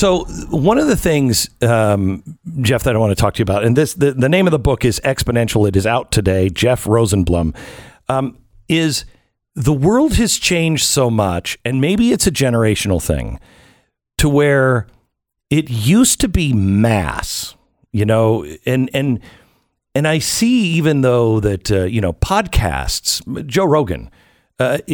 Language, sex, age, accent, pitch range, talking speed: English, male, 50-69, American, 105-155 Hz, 165 wpm